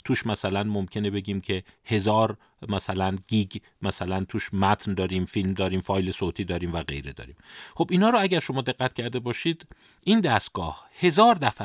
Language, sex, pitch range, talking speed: Persian, male, 100-135 Hz, 165 wpm